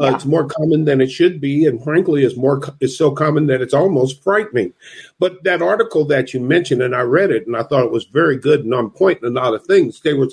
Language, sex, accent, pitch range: English, male, American, 115-160 Hz